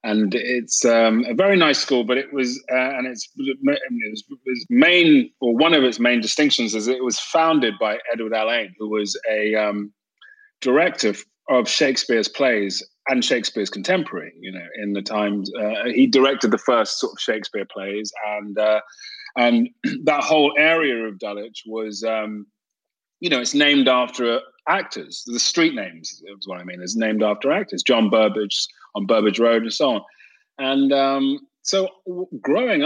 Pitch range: 110-160 Hz